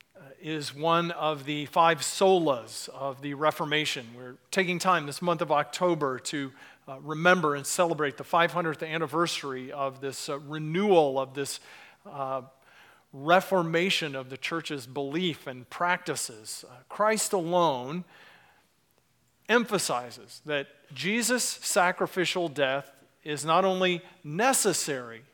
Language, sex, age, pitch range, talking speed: English, male, 40-59, 140-175 Hz, 120 wpm